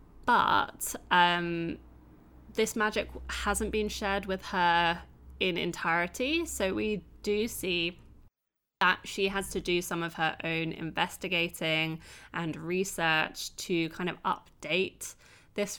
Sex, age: female, 20-39